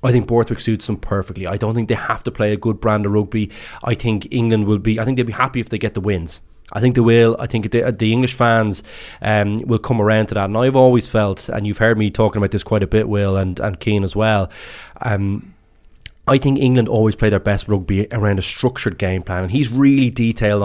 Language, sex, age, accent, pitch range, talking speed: English, male, 20-39, Irish, 105-125 Hz, 250 wpm